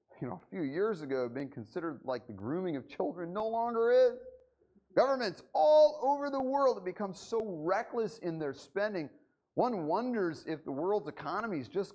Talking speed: 180 wpm